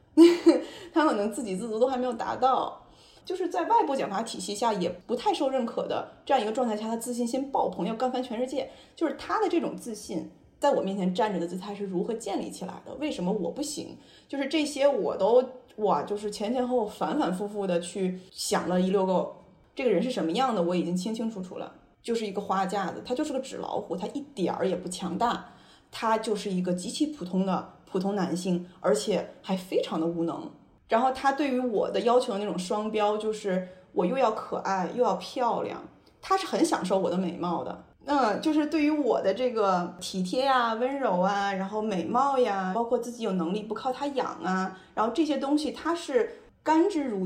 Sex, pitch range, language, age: female, 185-260 Hz, Chinese, 20-39